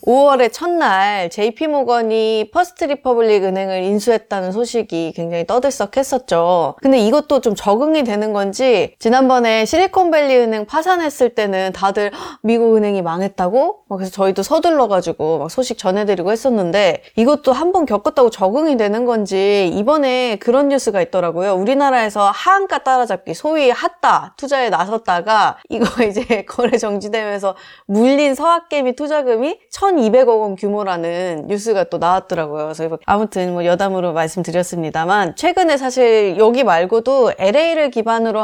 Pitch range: 195-270 Hz